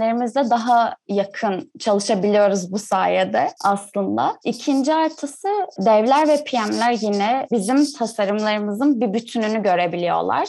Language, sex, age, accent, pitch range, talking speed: Turkish, female, 20-39, native, 205-250 Hz, 95 wpm